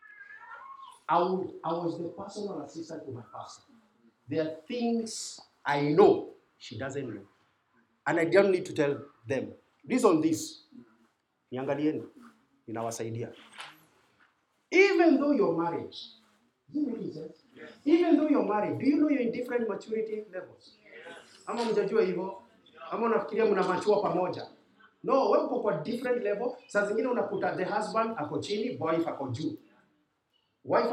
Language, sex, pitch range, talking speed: English, male, 170-265 Hz, 115 wpm